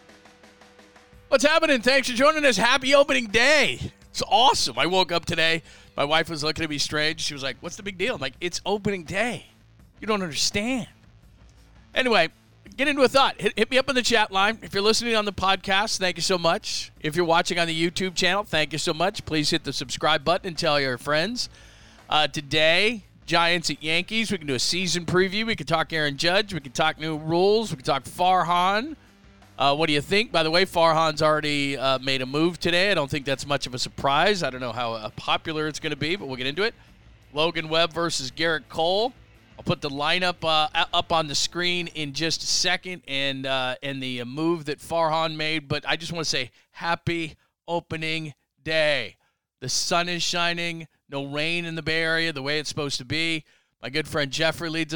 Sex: male